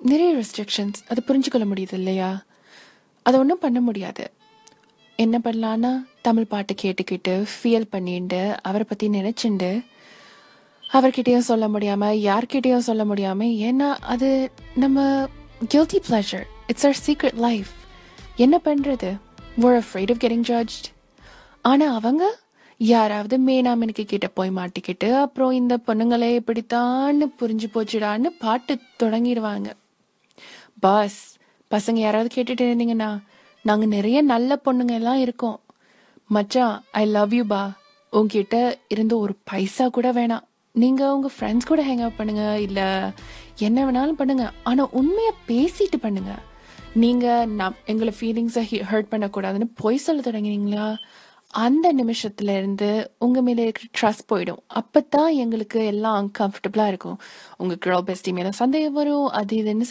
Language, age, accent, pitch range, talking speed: Tamil, 20-39, native, 210-255 Hz, 115 wpm